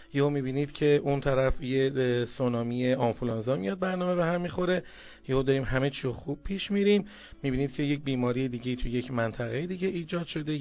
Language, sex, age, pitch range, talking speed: Persian, male, 40-59, 125-160 Hz, 175 wpm